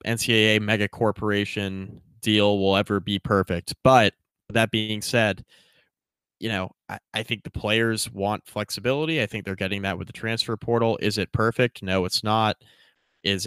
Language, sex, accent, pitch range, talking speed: English, male, American, 95-115 Hz, 165 wpm